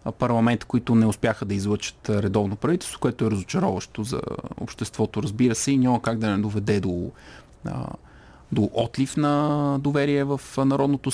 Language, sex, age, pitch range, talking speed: Bulgarian, male, 30-49, 105-140 Hz, 150 wpm